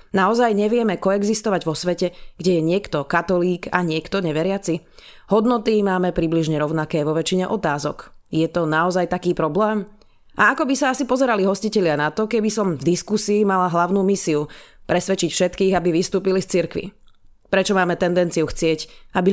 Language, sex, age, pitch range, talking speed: Slovak, female, 30-49, 165-205 Hz, 160 wpm